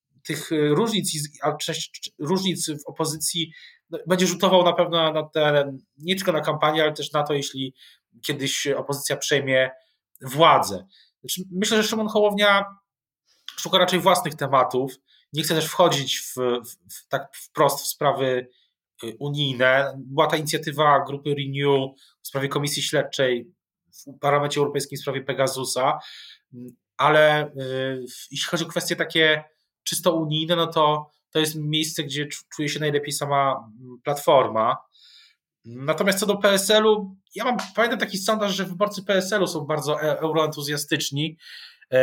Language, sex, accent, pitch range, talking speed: Polish, male, native, 135-170 Hz, 135 wpm